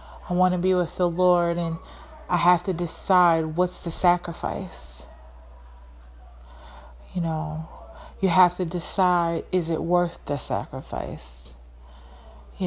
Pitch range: 150-180 Hz